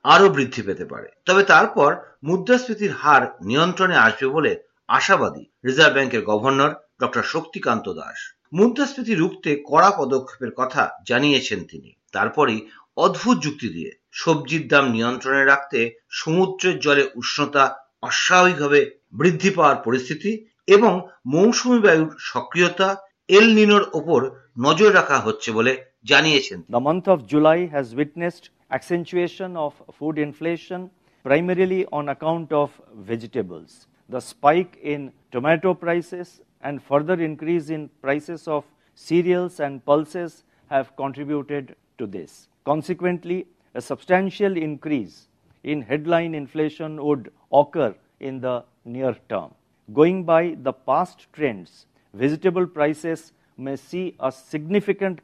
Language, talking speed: Bengali, 105 wpm